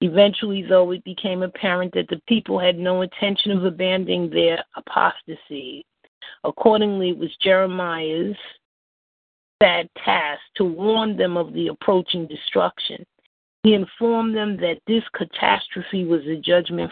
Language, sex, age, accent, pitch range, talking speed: English, female, 40-59, American, 170-195 Hz, 130 wpm